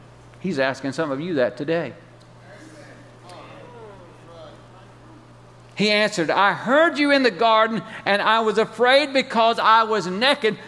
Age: 50-69